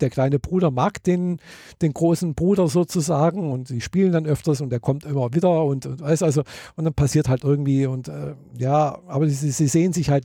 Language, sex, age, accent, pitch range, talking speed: German, male, 50-69, German, 125-155 Hz, 210 wpm